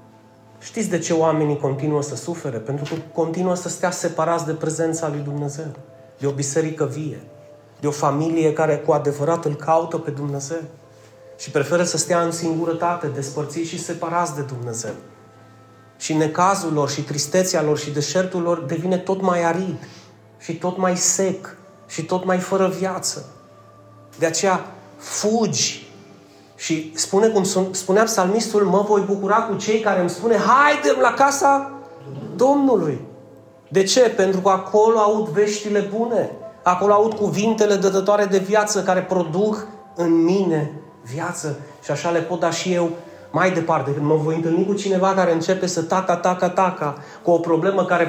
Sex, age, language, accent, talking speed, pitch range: male, 30-49, Romanian, native, 155 wpm, 150-190 Hz